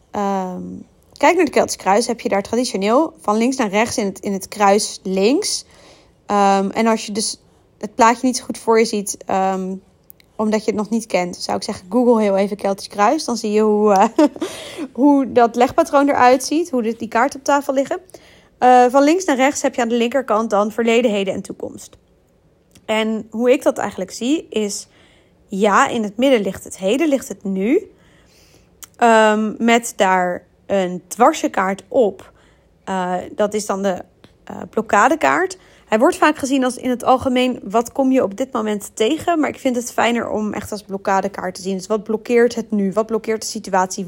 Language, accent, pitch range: Dutch, Dutch, 200-255 Hz